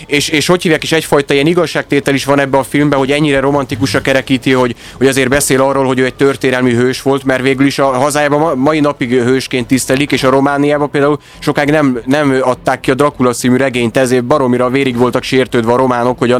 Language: Hungarian